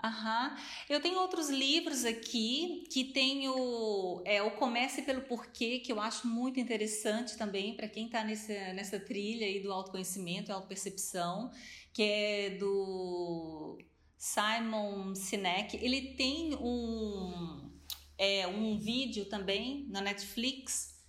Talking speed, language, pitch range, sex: 120 wpm, Vietnamese, 195-235 Hz, female